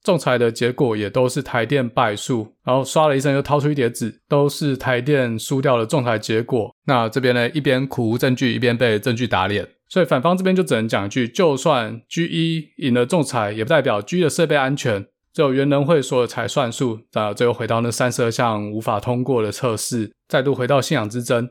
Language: Chinese